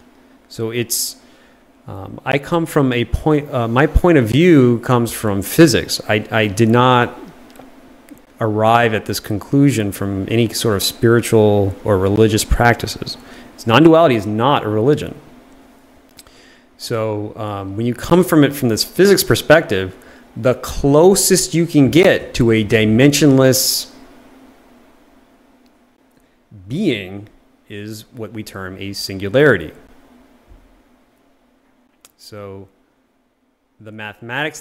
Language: English